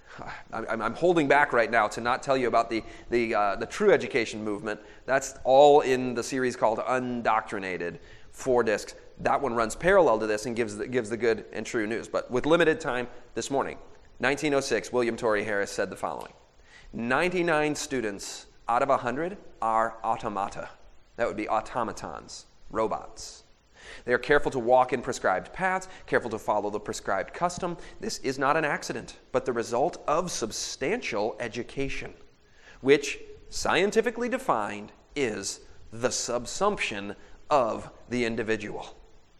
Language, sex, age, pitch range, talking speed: English, male, 30-49, 115-145 Hz, 150 wpm